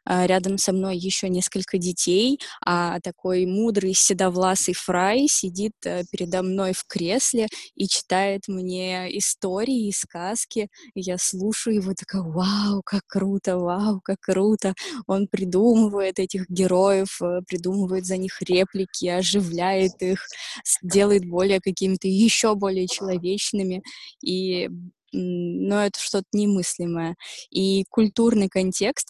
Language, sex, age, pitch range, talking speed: Russian, female, 20-39, 180-200 Hz, 115 wpm